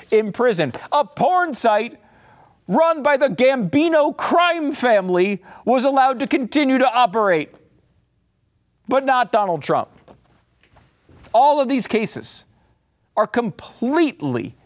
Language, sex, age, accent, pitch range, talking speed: English, male, 40-59, American, 130-220 Hz, 110 wpm